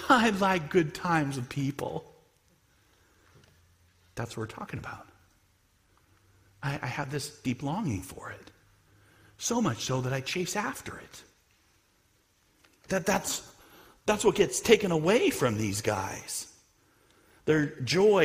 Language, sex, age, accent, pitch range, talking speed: English, male, 40-59, American, 110-185 Hz, 130 wpm